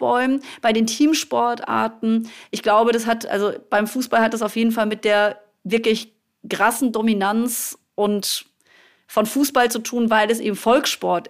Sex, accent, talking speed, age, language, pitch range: female, German, 155 wpm, 30-49, German, 215-250 Hz